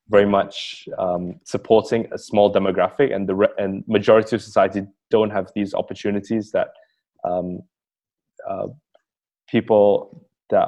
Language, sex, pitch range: English, male, 95-110 Hz